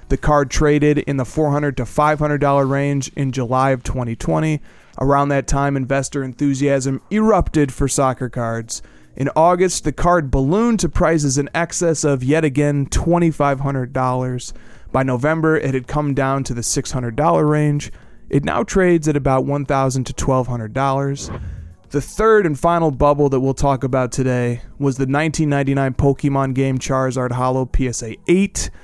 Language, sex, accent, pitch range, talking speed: English, male, American, 130-155 Hz, 150 wpm